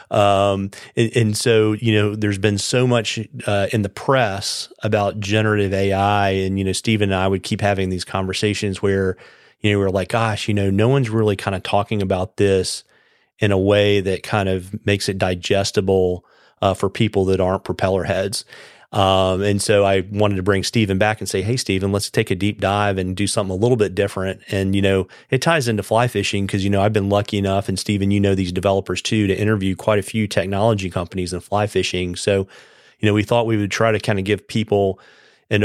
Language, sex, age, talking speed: English, male, 40-59, 220 wpm